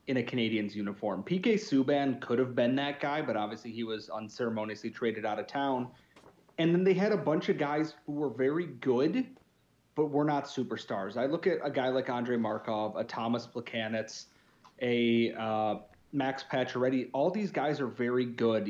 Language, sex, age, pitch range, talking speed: English, male, 30-49, 115-145 Hz, 185 wpm